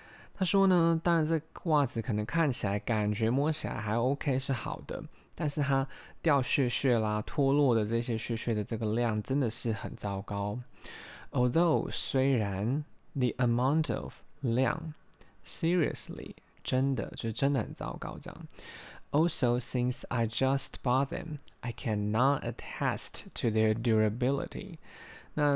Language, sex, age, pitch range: Chinese, male, 20-39, 110-145 Hz